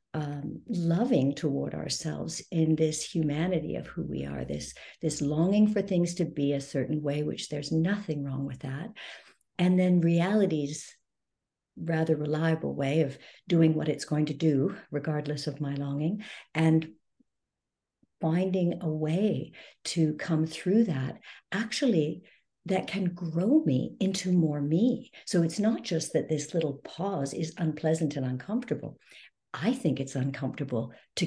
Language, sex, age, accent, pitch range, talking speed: English, female, 60-79, American, 145-185 Hz, 150 wpm